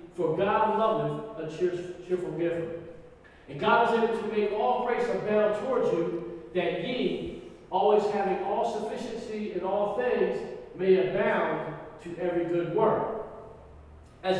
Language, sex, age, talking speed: English, male, 50-69, 140 wpm